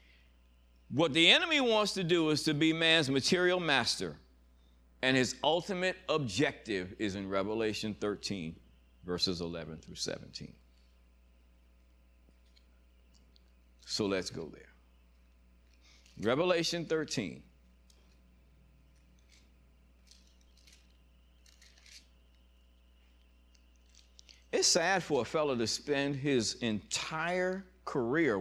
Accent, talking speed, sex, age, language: American, 85 wpm, male, 50-69, English